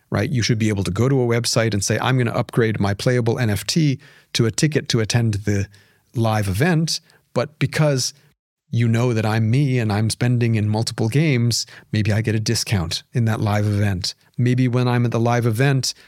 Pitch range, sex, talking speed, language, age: 110-130 Hz, male, 210 wpm, English, 40-59